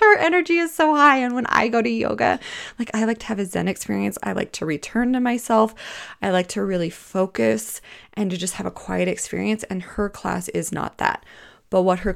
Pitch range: 185-230 Hz